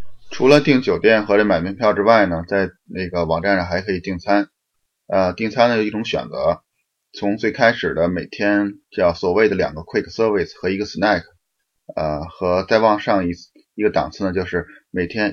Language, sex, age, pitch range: Chinese, male, 20-39, 85-105 Hz